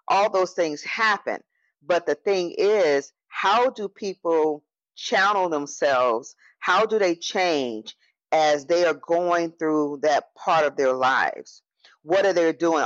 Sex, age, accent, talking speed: female, 40-59, American, 145 wpm